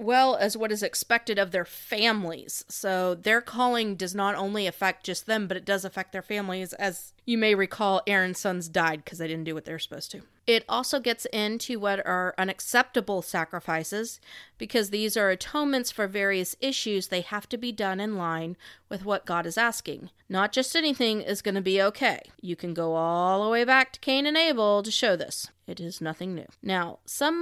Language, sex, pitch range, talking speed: English, female, 185-235 Hz, 205 wpm